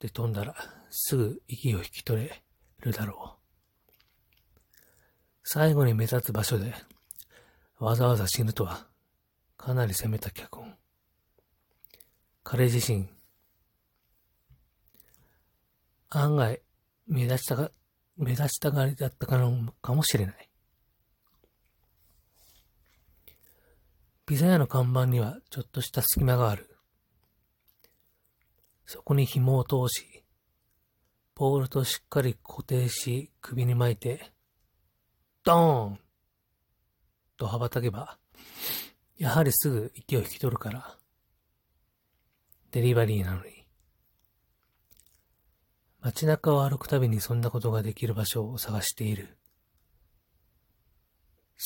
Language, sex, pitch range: Japanese, male, 105-130 Hz